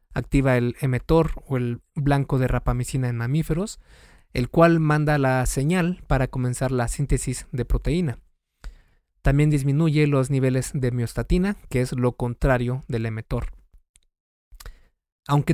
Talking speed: 130 wpm